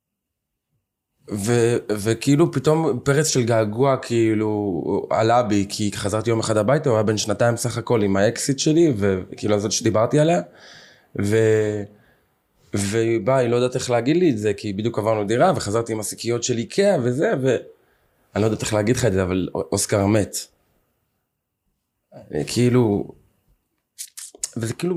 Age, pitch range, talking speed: 20-39, 110-140 Hz, 140 wpm